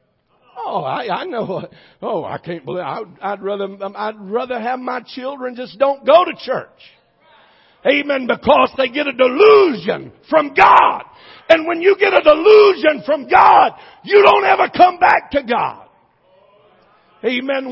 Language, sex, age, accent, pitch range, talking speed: English, male, 50-69, American, 255-335 Hz, 150 wpm